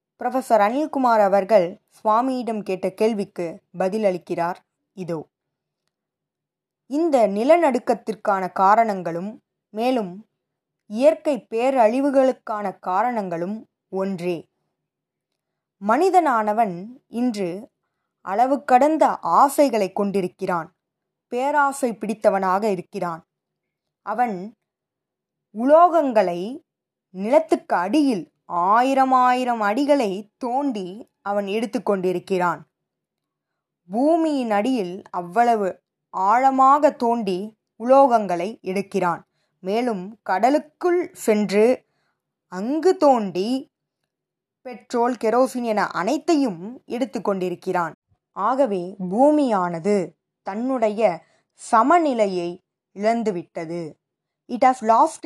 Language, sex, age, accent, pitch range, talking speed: Tamil, female, 20-39, native, 190-260 Hz, 65 wpm